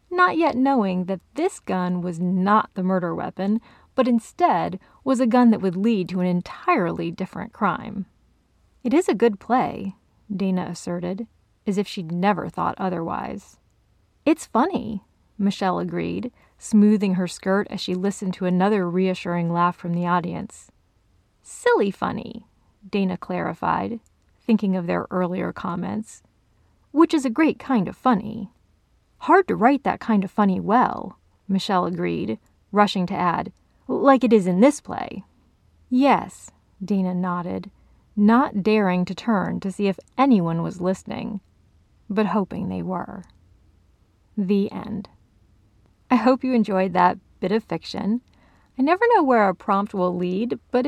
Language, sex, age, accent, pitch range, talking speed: English, female, 30-49, American, 180-235 Hz, 145 wpm